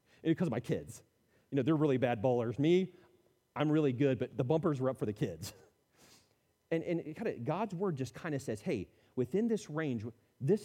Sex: male